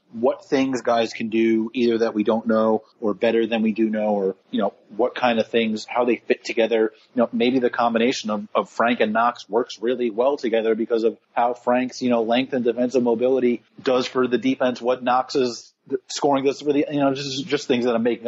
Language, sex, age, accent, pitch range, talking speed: English, male, 30-49, American, 110-130 Hz, 225 wpm